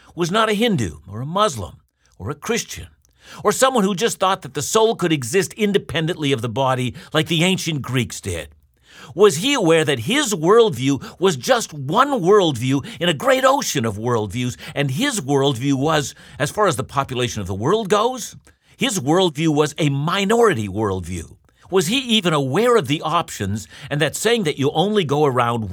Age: 50-69